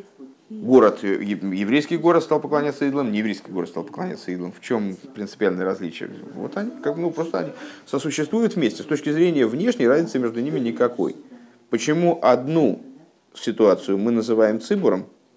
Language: Russian